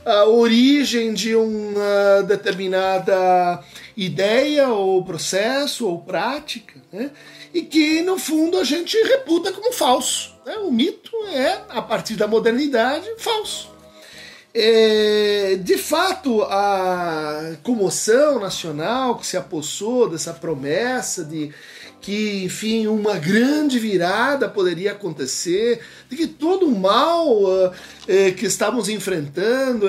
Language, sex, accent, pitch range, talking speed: Portuguese, male, Brazilian, 195-290 Hz, 110 wpm